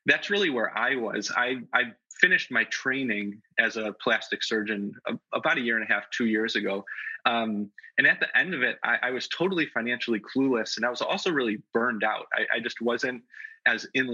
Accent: American